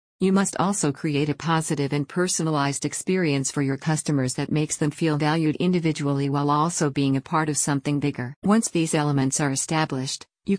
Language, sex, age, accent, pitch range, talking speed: English, female, 50-69, American, 140-165 Hz, 180 wpm